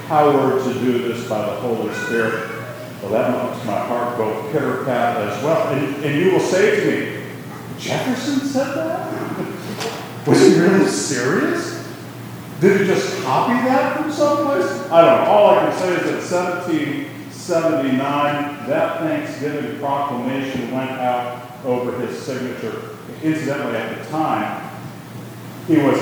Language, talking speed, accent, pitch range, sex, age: English, 145 wpm, American, 115-145 Hz, male, 40-59